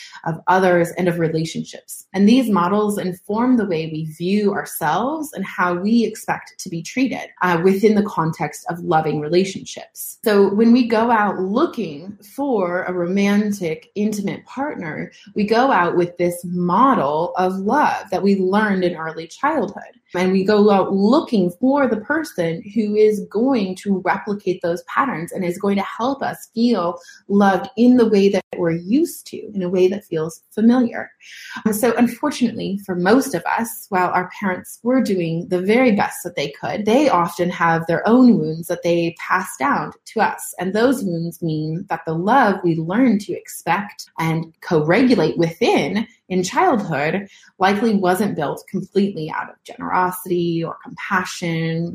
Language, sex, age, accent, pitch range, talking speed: English, female, 30-49, American, 175-230 Hz, 165 wpm